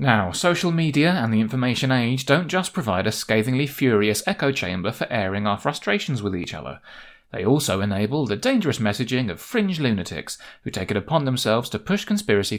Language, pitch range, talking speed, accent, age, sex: English, 105-140 Hz, 185 wpm, British, 30-49, male